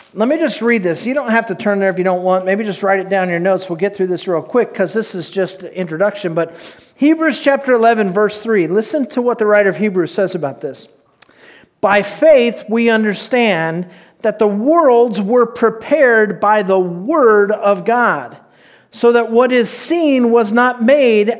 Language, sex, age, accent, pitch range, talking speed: English, male, 40-59, American, 205-250 Hz, 205 wpm